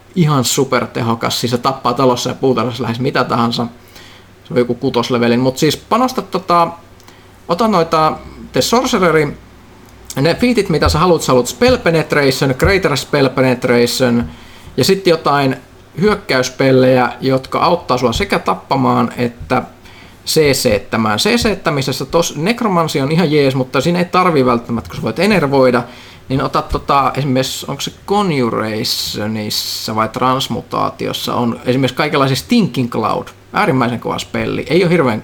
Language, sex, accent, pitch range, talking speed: Finnish, male, native, 120-165 Hz, 140 wpm